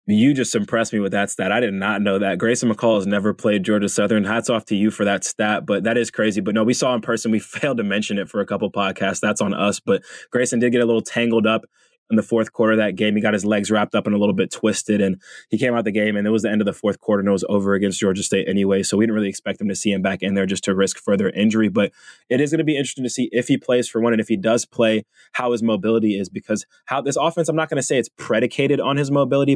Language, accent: English, American